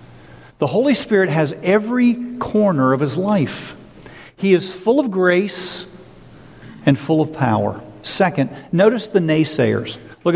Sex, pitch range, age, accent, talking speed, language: male, 150-205 Hz, 50-69, American, 135 wpm, English